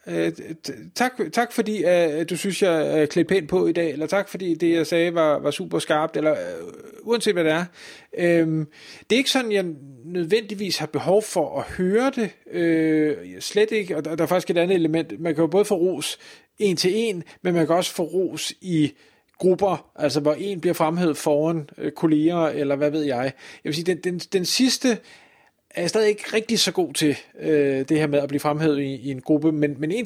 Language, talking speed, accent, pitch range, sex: Danish, 210 wpm, native, 150-195 Hz, male